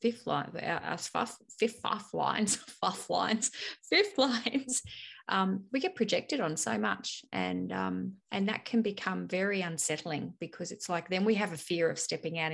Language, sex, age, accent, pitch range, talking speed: English, female, 30-49, Australian, 170-225 Hz, 175 wpm